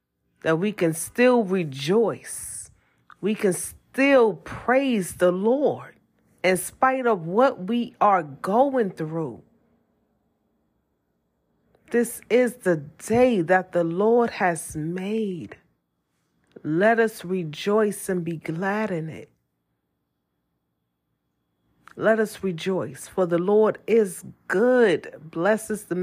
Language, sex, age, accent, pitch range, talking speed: English, female, 40-59, American, 155-215 Hz, 105 wpm